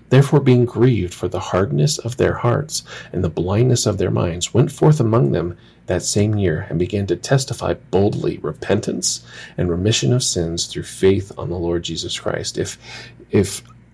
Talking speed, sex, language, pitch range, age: 175 wpm, male, English, 85-120 Hz, 40-59